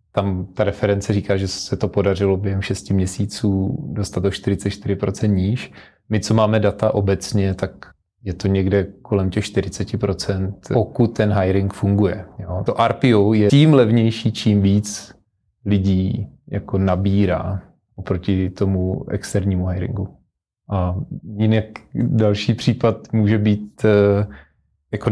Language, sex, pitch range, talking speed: Czech, male, 100-110 Hz, 120 wpm